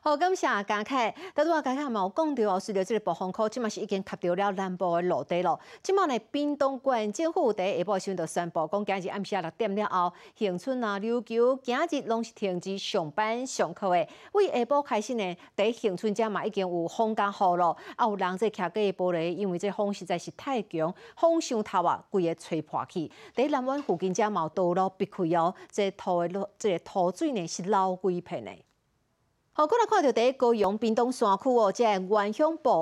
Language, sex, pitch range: Chinese, female, 180-240 Hz